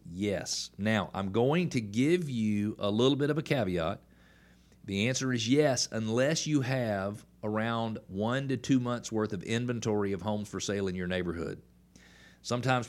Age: 40-59